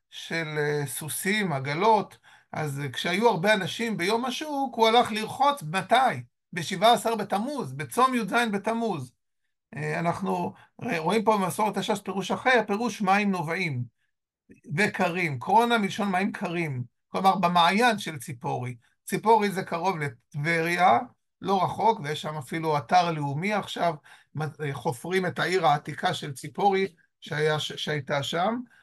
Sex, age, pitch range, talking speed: male, 50-69, 160-225 Hz, 130 wpm